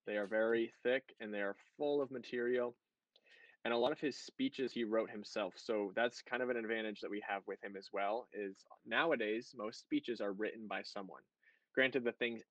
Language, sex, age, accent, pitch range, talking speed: English, male, 20-39, American, 105-145 Hz, 205 wpm